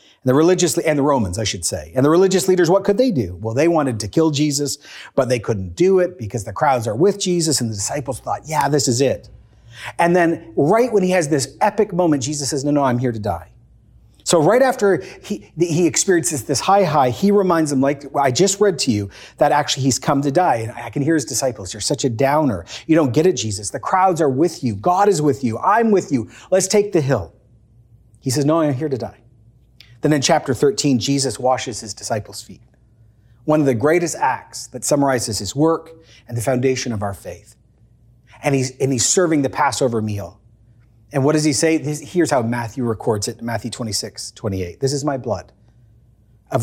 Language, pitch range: English, 115-155 Hz